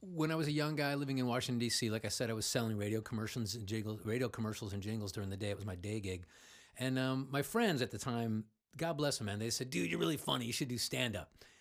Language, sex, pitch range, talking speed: English, male, 105-135 Hz, 275 wpm